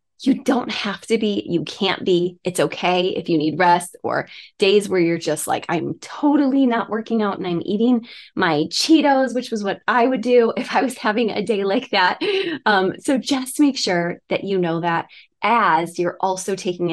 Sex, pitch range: female, 175-230 Hz